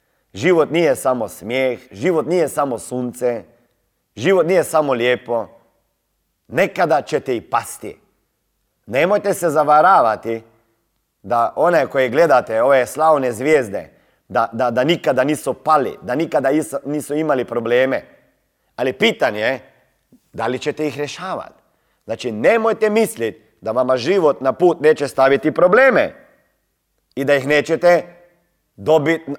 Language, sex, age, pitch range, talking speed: Croatian, male, 30-49, 130-195 Hz, 125 wpm